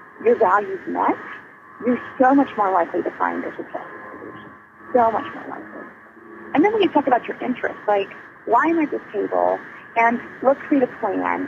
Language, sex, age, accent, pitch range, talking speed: English, female, 40-59, American, 210-310 Hz, 185 wpm